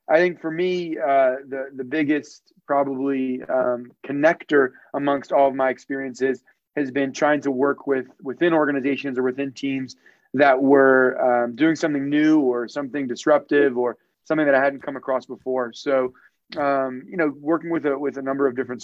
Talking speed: 180 wpm